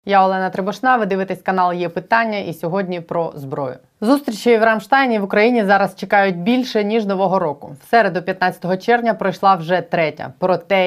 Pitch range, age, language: 175-215 Hz, 20-39, Ukrainian